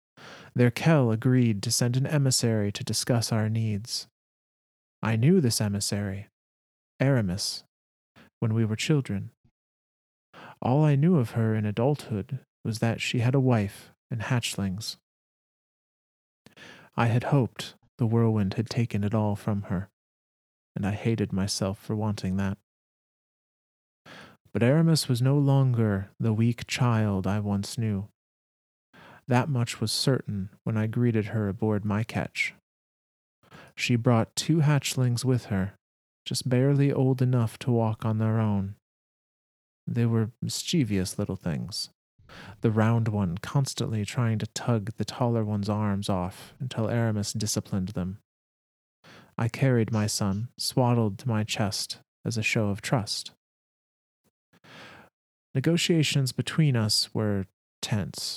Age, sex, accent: 30-49, male, American